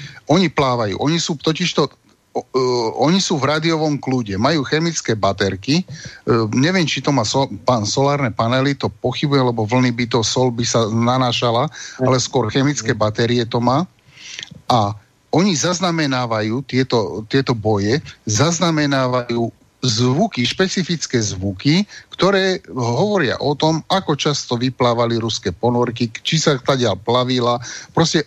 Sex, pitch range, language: male, 120-155 Hz, Slovak